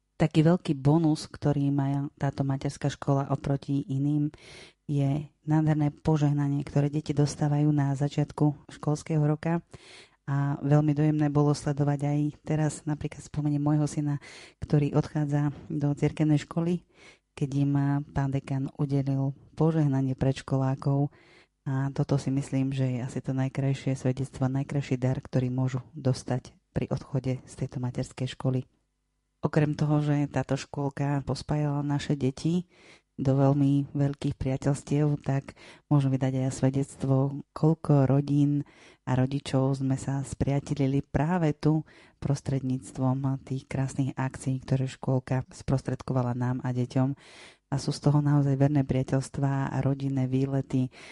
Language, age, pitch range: Slovak, 30-49, 130-150 Hz